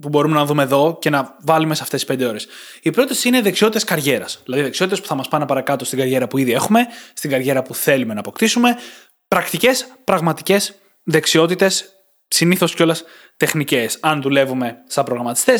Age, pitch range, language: 20-39, 140-200 Hz, Greek